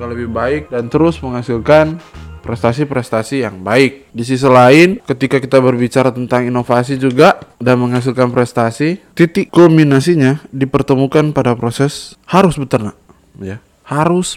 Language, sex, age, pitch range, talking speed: Indonesian, male, 20-39, 125-155 Hz, 120 wpm